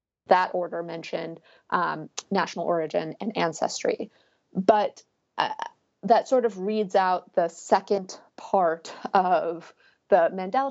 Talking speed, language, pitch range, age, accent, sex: 120 wpm, English, 175-205 Hz, 30-49, American, female